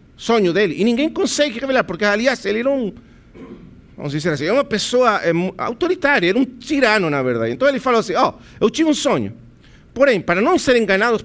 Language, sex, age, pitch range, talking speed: Portuguese, male, 50-69, 175-265 Hz, 210 wpm